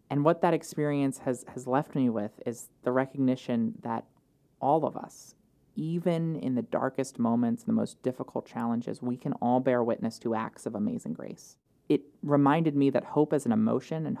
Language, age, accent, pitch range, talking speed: English, 30-49, American, 120-145 Hz, 185 wpm